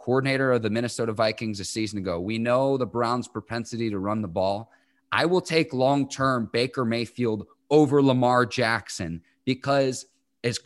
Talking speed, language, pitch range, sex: 160 wpm, English, 110-150 Hz, male